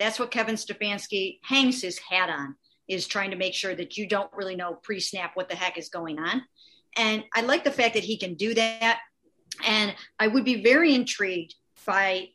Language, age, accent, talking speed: English, 50-69, American, 205 wpm